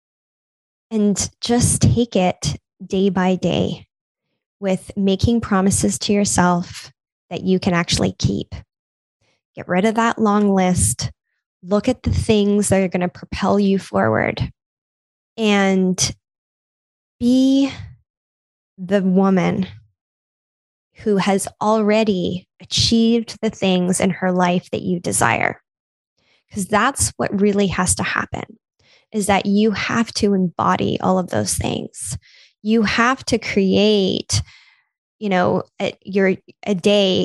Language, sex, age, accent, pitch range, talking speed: English, female, 10-29, American, 185-210 Hz, 125 wpm